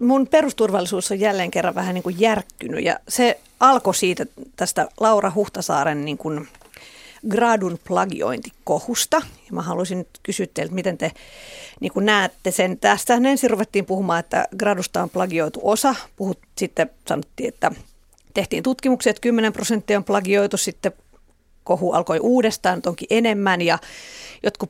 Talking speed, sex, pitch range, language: 135 wpm, female, 185-235 Hz, Finnish